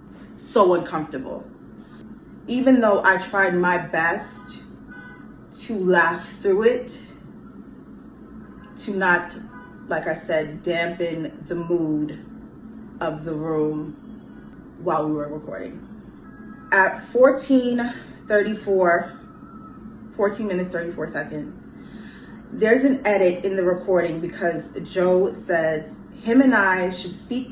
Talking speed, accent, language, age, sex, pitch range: 105 wpm, American, English, 20-39, female, 170-215 Hz